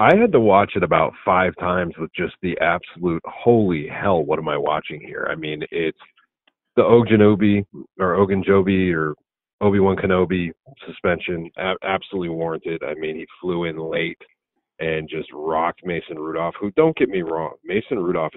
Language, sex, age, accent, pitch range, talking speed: English, male, 40-59, American, 90-140 Hz, 155 wpm